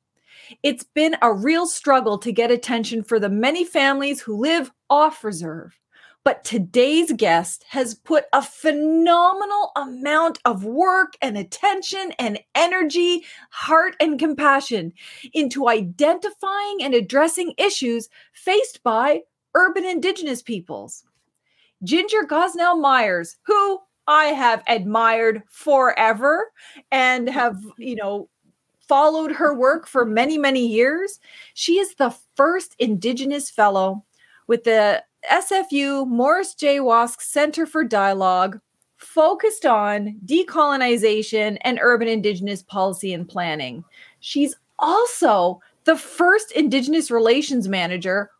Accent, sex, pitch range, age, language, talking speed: American, female, 225-315 Hz, 30-49, English, 115 wpm